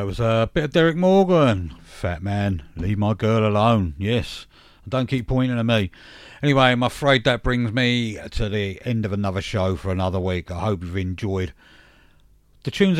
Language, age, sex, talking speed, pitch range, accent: English, 50-69, male, 180 wpm, 100-130 Hz, British